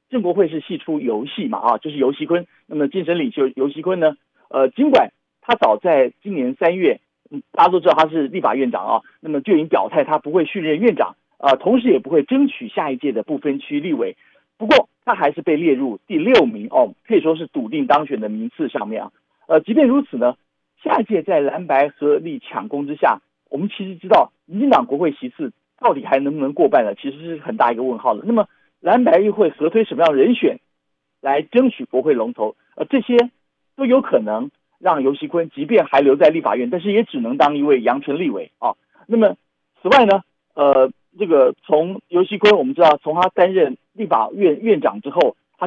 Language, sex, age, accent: Chinese, male, 50-69, native